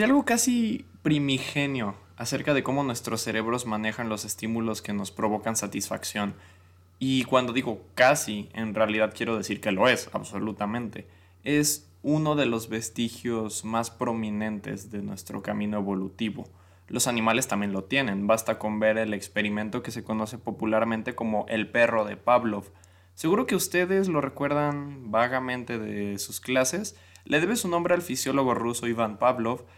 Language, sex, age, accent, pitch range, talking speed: Spanish, male, 20-39, Mexican, 105-130 Hz, 150 wpm